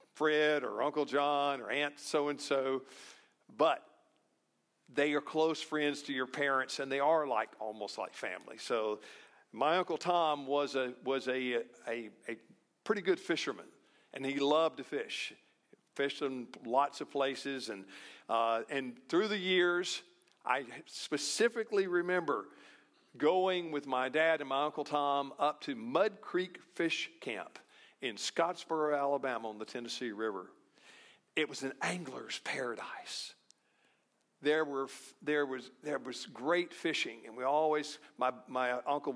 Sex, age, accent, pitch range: male, 50-69, American, 135-170 Hz